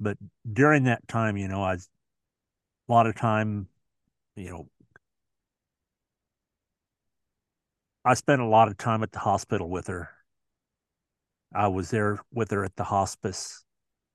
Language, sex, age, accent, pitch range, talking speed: English, male, 50-69, American, 95-115 Hz, 135 wpm